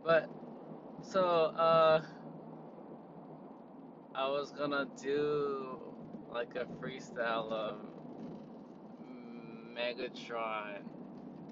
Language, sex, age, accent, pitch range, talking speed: English, male, 20-39, American, 125-155 Hz, 65 wpm